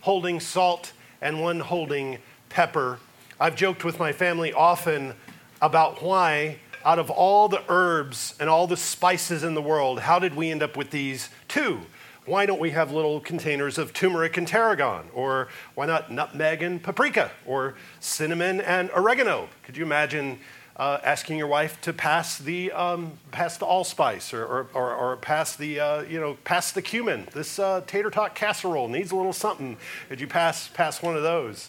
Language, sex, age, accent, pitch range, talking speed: English, male, 40-59, American, 140-180 Hz, 180 wpm